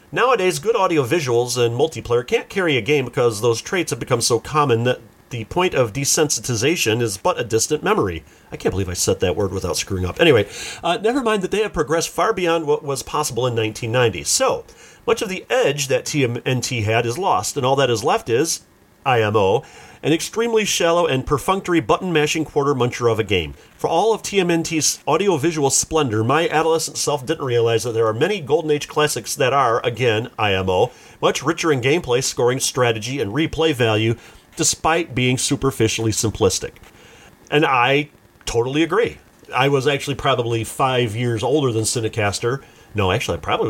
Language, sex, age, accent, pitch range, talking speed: English, male, 40-59, American, 115-160 Hz, 180 wpm